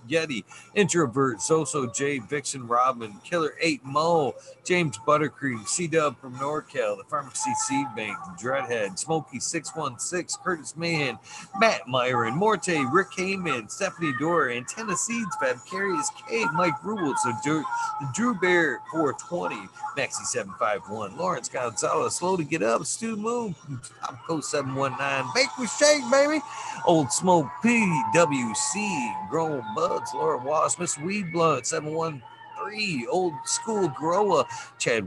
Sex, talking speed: male, 125 wpm